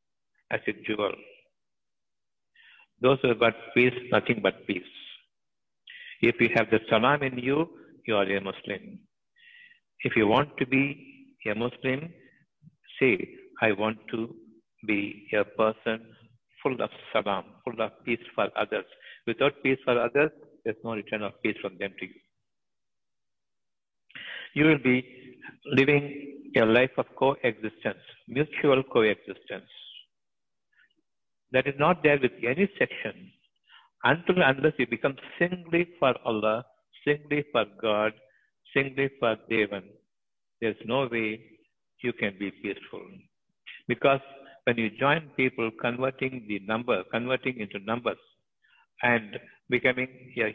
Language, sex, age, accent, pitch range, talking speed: Tamil, male, 60-79, native, 110-140 Hz, 130 wpm